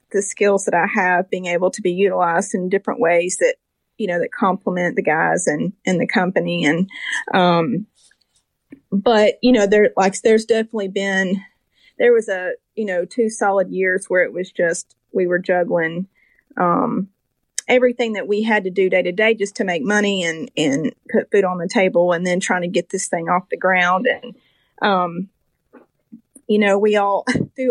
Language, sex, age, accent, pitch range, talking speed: English, female, 30-49, American, 180-225 Hz, 190 wpm